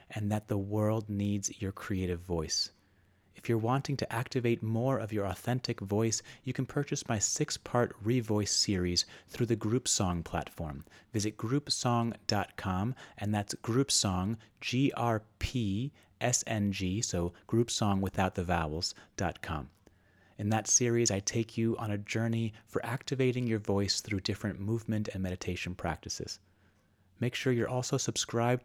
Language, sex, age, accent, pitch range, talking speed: English, male, 30-49, American, 95-120 Hz, 145 wpm